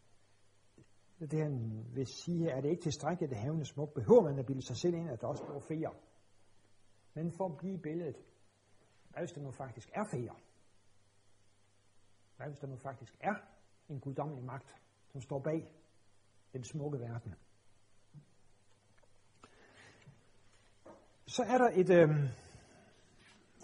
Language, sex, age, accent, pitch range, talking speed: Danish, male, 60-79, native, 105-165 Hz, 150 wpm